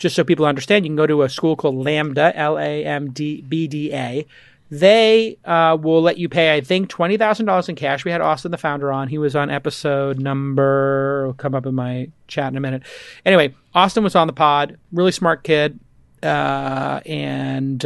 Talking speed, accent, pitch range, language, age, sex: 190 wpm, American, 140-175 Hz, English, 30-49, male